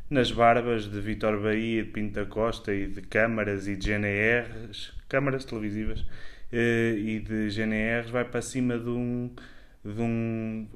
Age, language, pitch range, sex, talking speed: 20-39, Portuguese, 110-135 Hz, male, 145 wpm